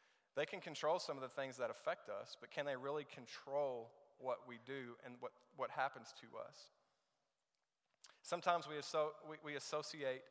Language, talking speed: English, 175 wpm